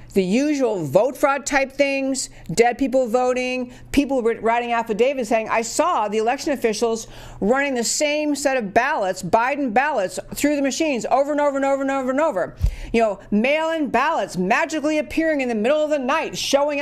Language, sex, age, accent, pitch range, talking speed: English, female, 50-69, American, 210-280 Hz, 185 wpm